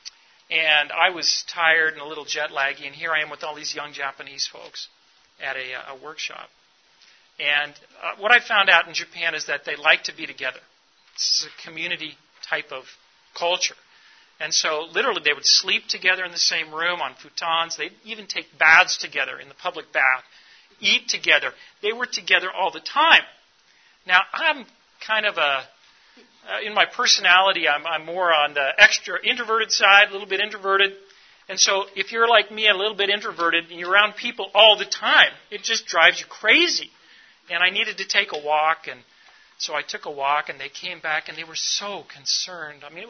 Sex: male